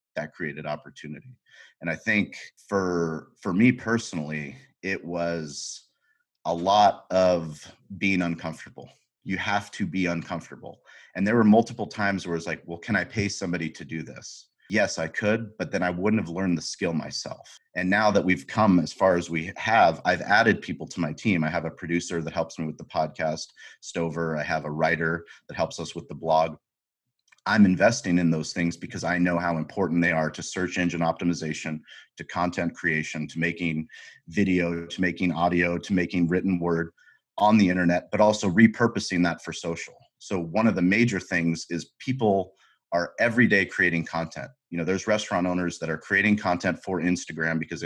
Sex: male